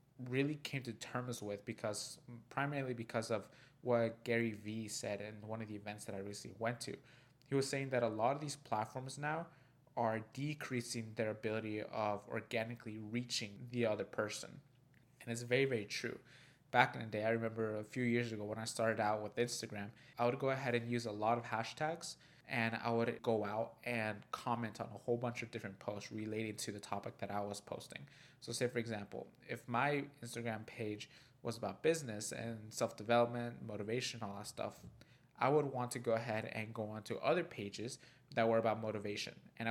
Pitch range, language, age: 110-125 Hz, English, 20-39